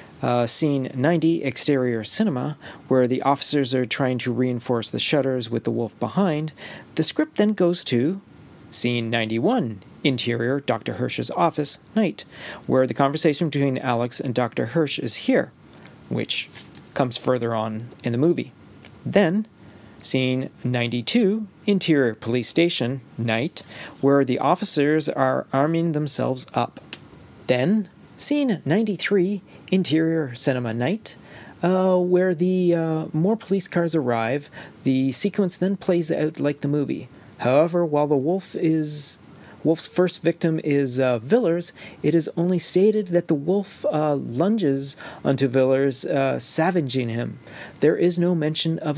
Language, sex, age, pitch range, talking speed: English, male, 40-59, 130-175 Hz, 140 wpm